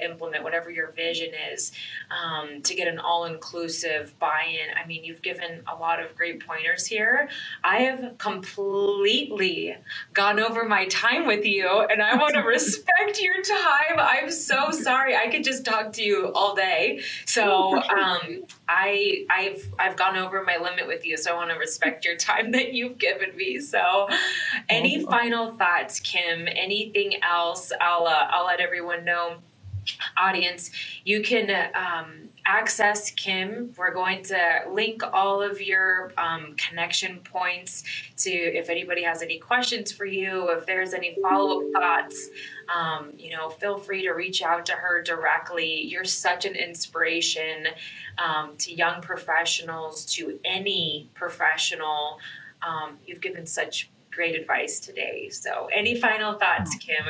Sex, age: female, 20-39